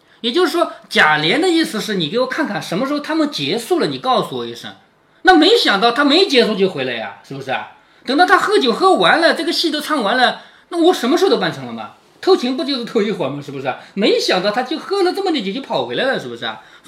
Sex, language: male, Chinese